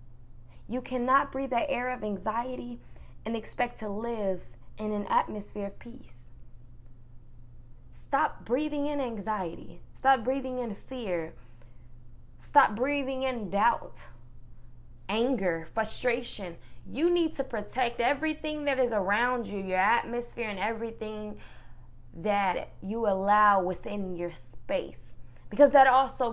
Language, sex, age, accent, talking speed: English, female, 20-39, American, 120 wpm